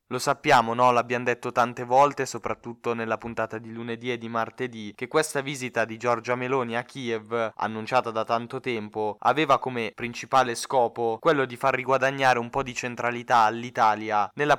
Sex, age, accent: male, 10-29, native